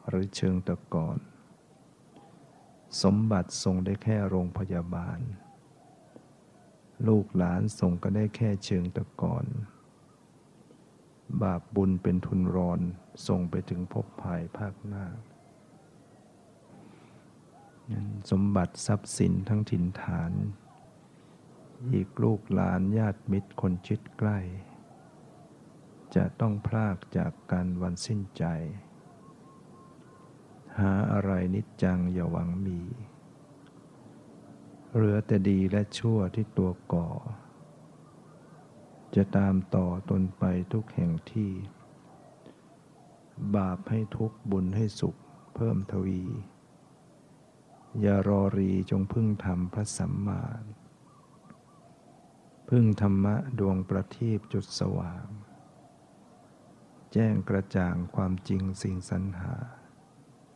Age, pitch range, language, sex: 60-79, 95-110 Hz, English, male